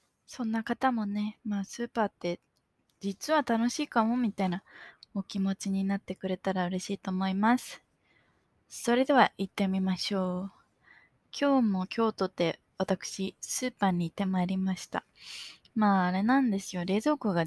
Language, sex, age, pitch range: Japanese, female, 20-39, 180-215 Hz